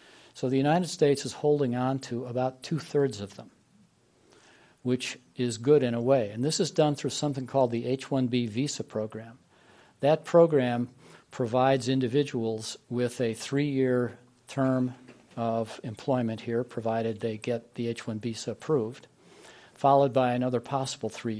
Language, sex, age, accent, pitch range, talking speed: English, male, 50-69, American, 120-135 Hz, 145 wpm